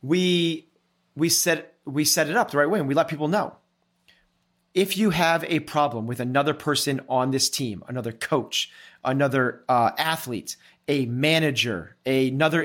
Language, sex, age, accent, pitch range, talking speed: English, male, 30-49, American, 135-165 Hz, 160 wpm